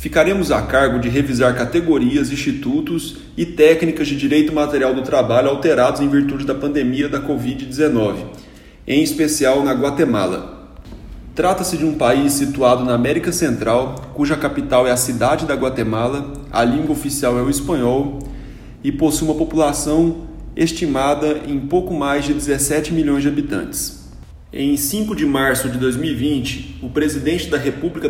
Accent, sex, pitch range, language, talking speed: Brazilian, male, 130-155 Hz, Portuguese, 145 wpm